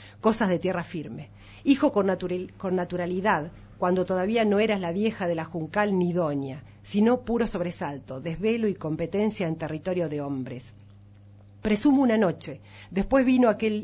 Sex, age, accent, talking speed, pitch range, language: female, 40-59, Argentinian, 150 wpm, 150-210 Hz, Spanish